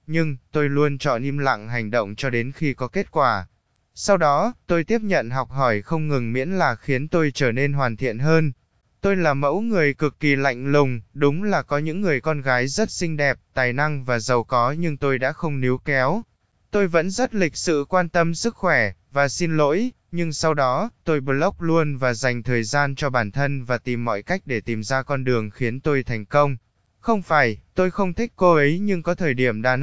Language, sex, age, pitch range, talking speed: Vietnamese, male, 20-39, 125-165 Hz, 225 wpm